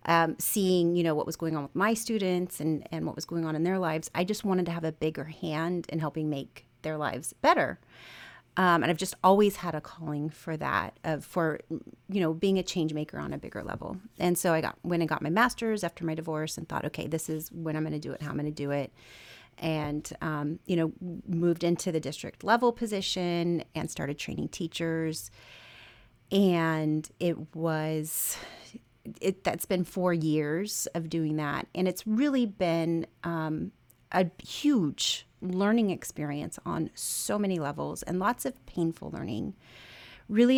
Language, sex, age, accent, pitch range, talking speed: English, female, 30-49, American, 155-185 Hz, 190 wpm